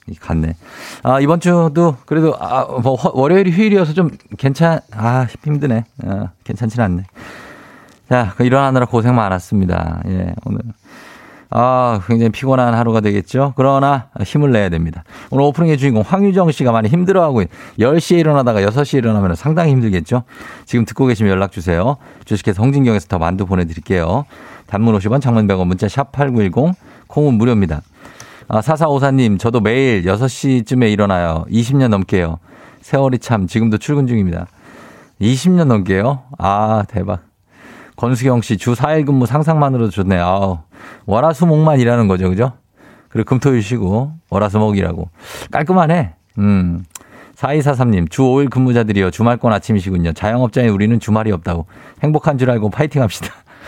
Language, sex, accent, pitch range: Korean, male, native, 100-140 Hz